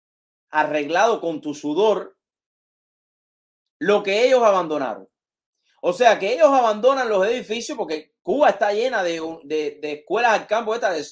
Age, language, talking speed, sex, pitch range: 30-49, English, 145 wpm, male, 155-255 Hz